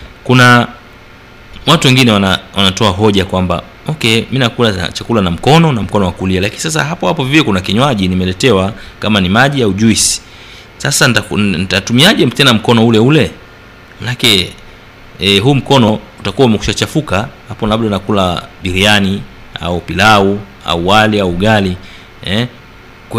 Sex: male